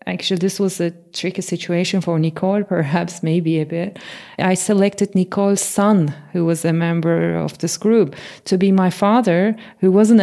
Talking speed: 170 wpm